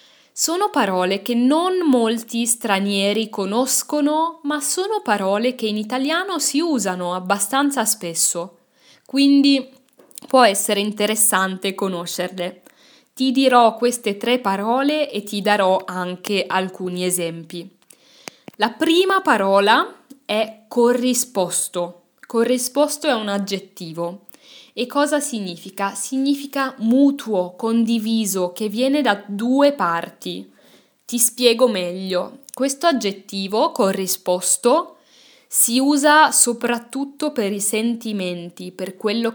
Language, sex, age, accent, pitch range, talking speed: Italian, female, 10-29, native, 190-260 Hz, 100 wpm